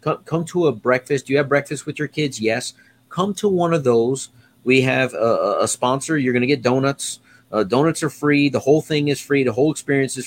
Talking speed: 235 wpm